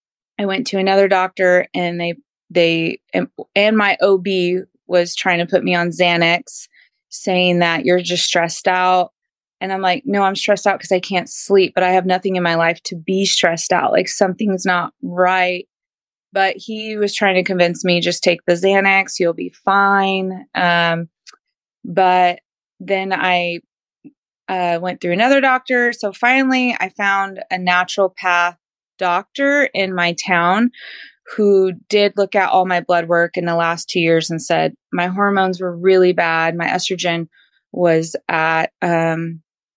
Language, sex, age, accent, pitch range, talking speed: English, female, 20-39, American, 175-200 Hz, 165 wpm